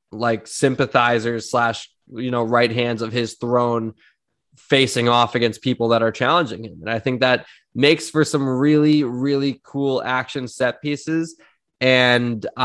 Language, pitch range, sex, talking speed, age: English, 115-130 Hz, male, 150 wpm, 20-39